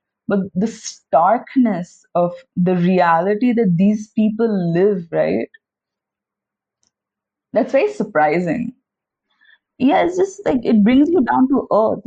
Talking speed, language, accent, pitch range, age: 120 wpm, English, Indian, 175-235 Hz, 20-39